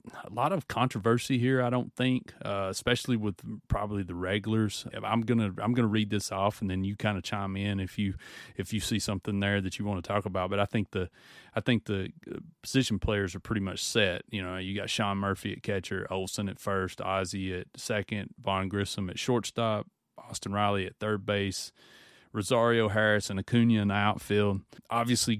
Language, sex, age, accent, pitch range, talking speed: English, male, 30-49, American, 95-110 Hz, 200 wpm